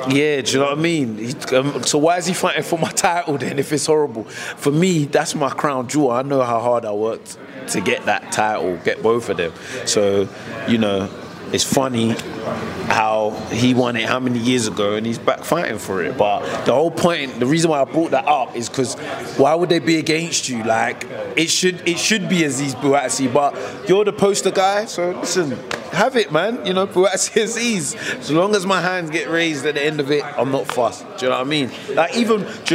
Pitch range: 130-185 Hz